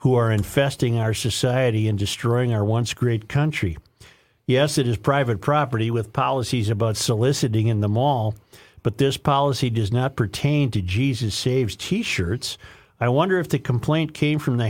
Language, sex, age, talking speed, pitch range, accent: English, male, 50-69, 165 wpm, 110-145 Hz, American